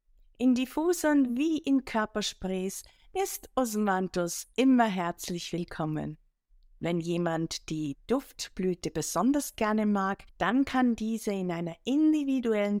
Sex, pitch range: female, 180-245 Hz